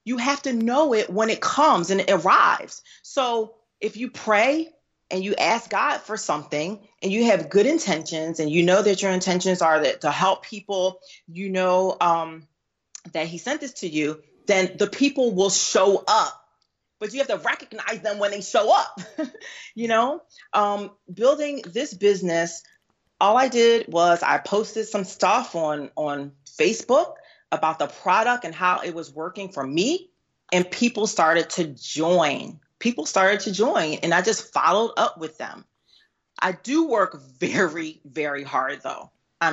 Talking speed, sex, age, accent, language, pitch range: 170 wpm, female, 30-49, American, English, 160-220 Hz